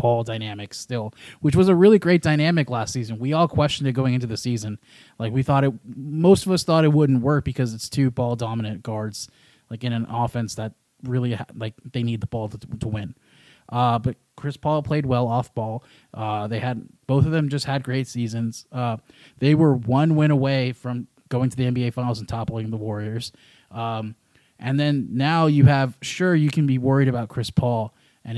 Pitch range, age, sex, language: 120-145 Hz, 20-39, male, English